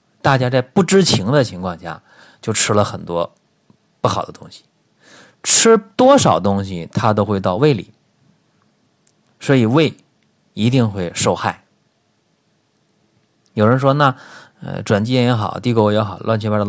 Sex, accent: male, native